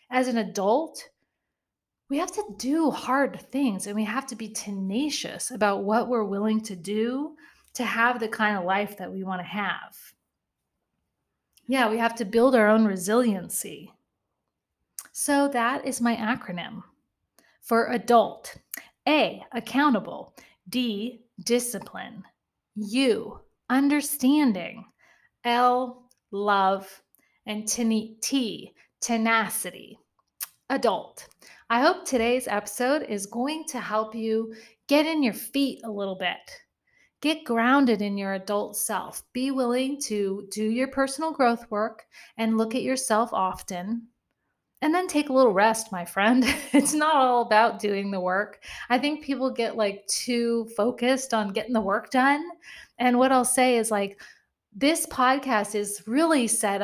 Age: 30-49